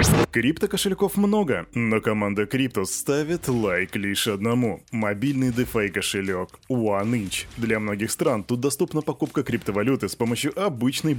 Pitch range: 110-145 Hz